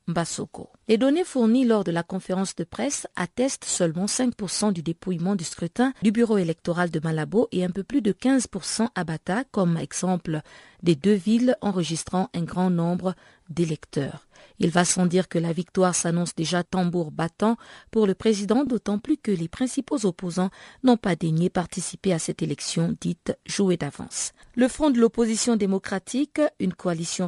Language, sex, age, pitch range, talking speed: French, female, 50-69, 170-220 Hz, 165 wpm